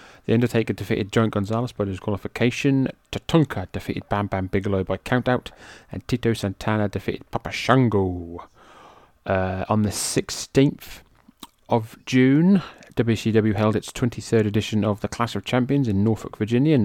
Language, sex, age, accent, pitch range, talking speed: English, male, 30-49, British, 100-115 Hz, 140 wpm